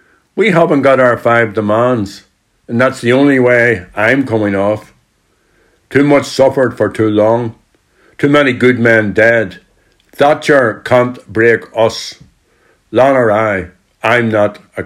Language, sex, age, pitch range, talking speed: English, male, 60-79, 105-130 Hz, 140 wpm